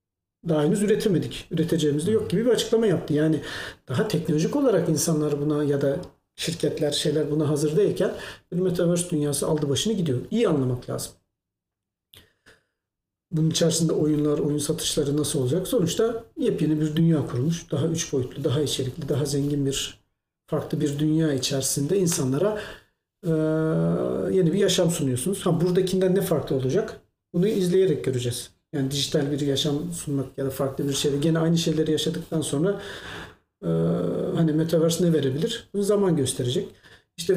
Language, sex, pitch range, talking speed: Turkish, male, 145-175 Hz, 150 wpm